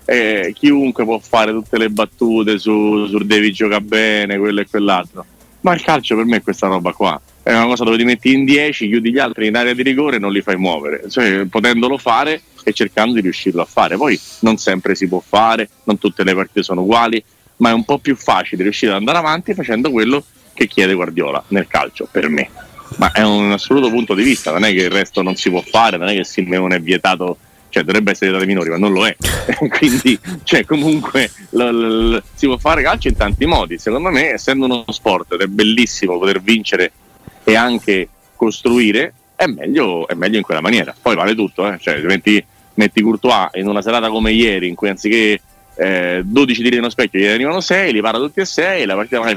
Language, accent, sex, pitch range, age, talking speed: Italian, native, male, 95-120 Hz, 30-49, 220 wpm